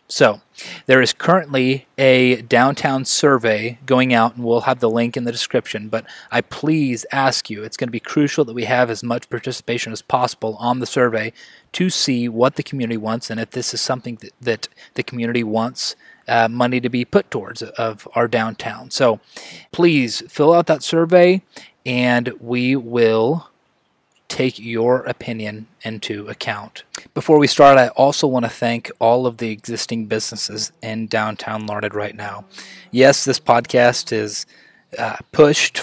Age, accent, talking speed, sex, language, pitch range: 20-39, American, 170 wpm, male, English, 115-130 Hz